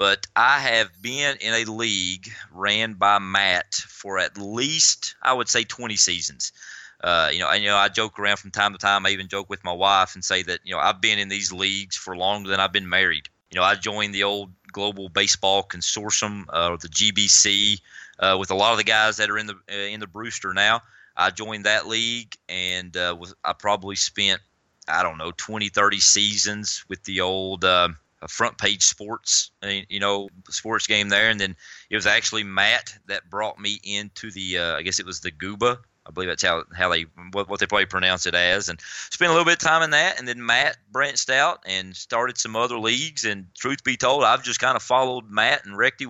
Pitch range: 95-110 Hz